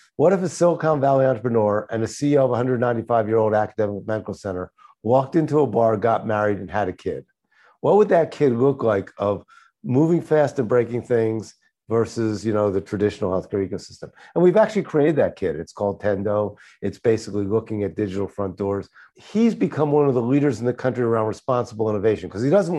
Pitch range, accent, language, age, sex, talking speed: 110-145 Hz, American, English, 50-69, male, 195 wpm